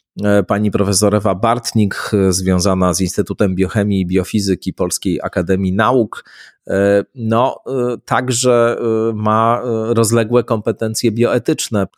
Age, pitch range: 30-49, 95-110 Hz